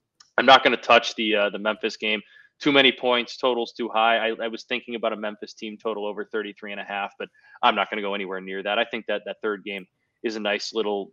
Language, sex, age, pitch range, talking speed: English, male, 20-39, 105-120 Hz, 265 wpm